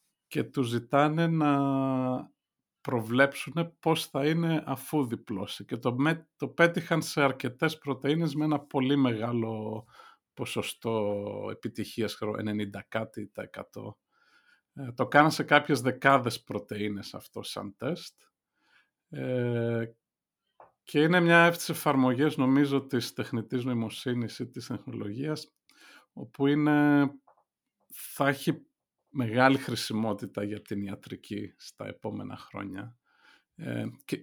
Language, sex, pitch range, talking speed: Greek, male, 110-140 Hz, 105 wpm